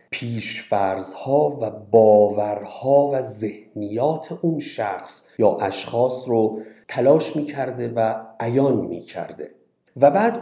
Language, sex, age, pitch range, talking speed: Persian, male, 50-69, 100-145 Hz, 105 wpm